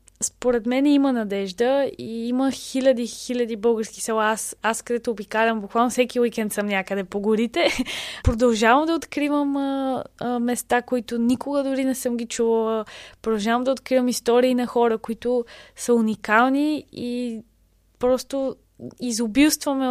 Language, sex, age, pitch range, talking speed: Bulgarian, female, 20-39, 215-255 Hz, 135 wpm